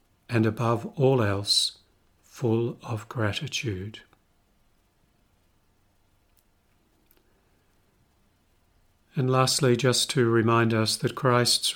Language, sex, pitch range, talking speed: English, male, 100-125 Hz, 75 wpm